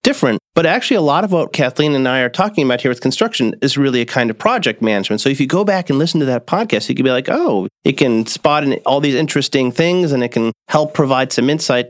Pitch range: 125-165 Hz